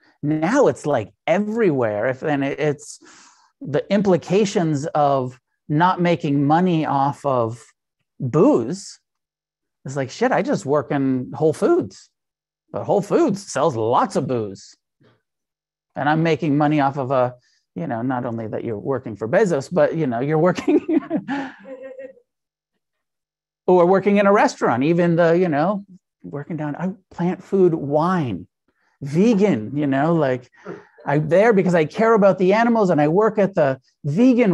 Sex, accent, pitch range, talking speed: male, American, 135-185 Hz, 150 wpm